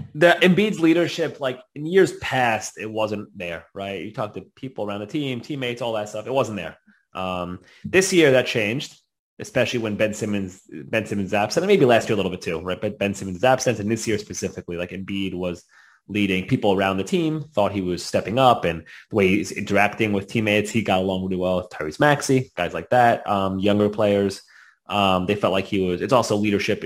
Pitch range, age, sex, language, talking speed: 95-135 Hz, 20-39, male, Hebrew, 210 wpm